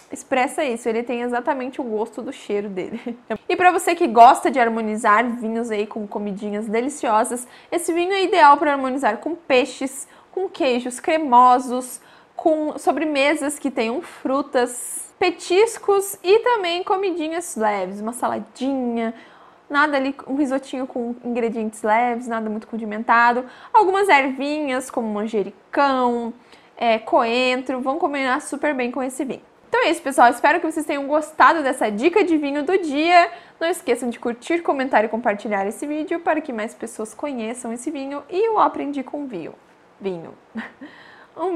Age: 20-39